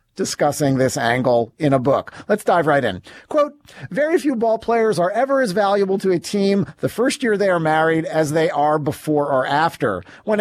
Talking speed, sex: 200 wpm, male